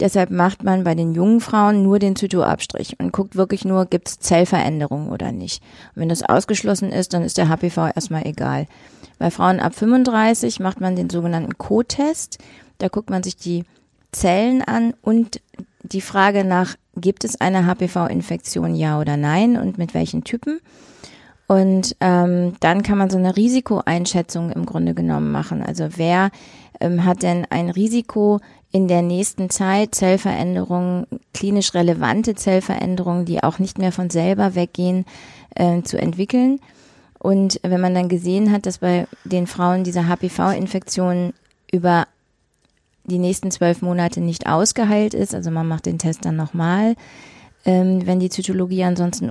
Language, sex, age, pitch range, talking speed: German, female, 30-49, 170-195 Hz, 160 wpm